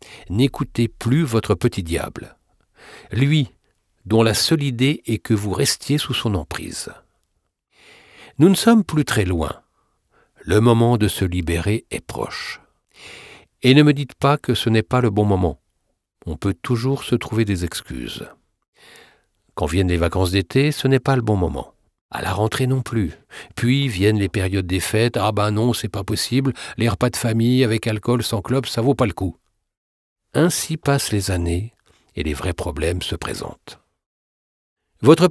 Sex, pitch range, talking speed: male, 95-130 Hz, 170 wpm